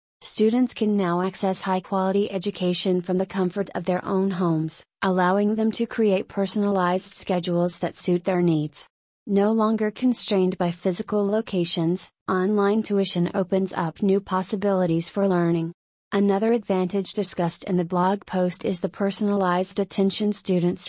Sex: female